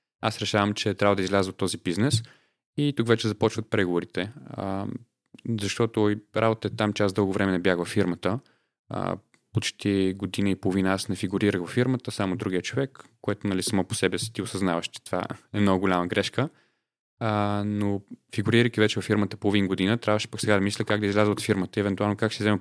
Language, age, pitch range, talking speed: Bulgarian, 20-39, 100-115 Hz, 205 wpm